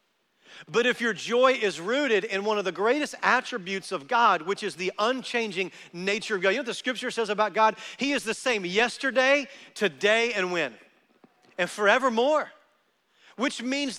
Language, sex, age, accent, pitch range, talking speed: English, male, 40-59, American, 160-240 Hz, 175 wpm